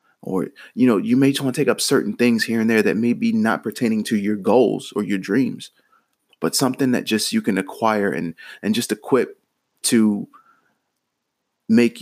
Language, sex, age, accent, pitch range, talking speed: English, male, 30-49, American, 105-120 Hz, 195 wpm